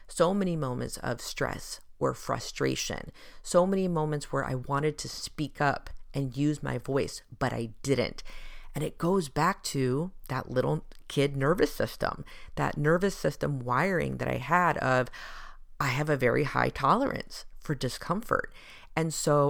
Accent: American